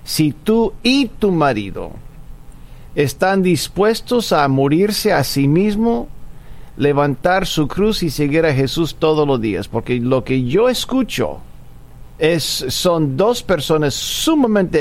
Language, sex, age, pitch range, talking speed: Spanish, male, 50-69, 140-200 Hz, 125 wpm